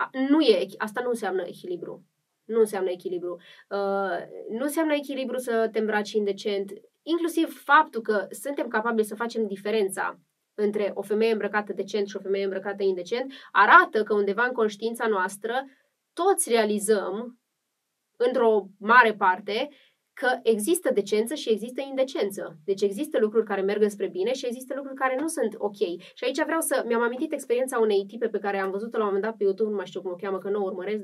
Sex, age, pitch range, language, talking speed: female, 20-39, 200-265 Hz, Romanian, 185 wpm